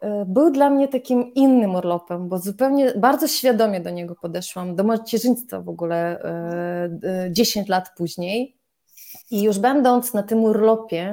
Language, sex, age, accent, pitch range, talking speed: Polish, female, 20-39, native, 190-245 Hz, 140 wpm